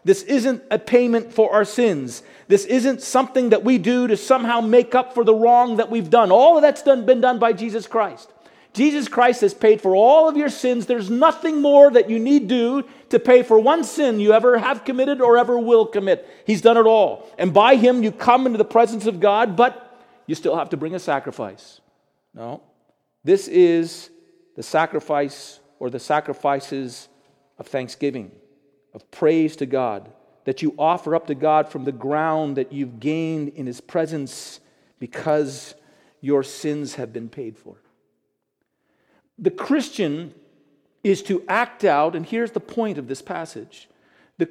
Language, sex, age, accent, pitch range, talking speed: English, male, 40-59, American, 160-250 Hz, 180 wpm